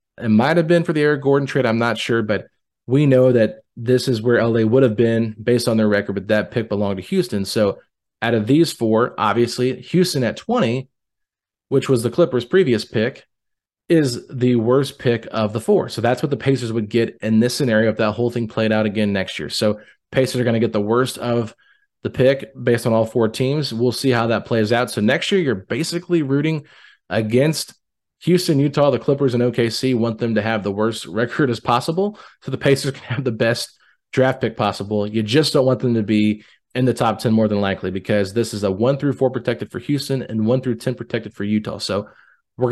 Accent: American